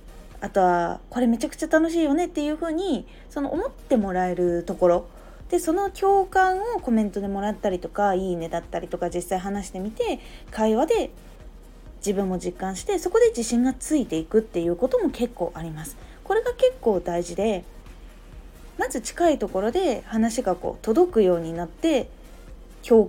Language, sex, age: Japanese, female, 20-39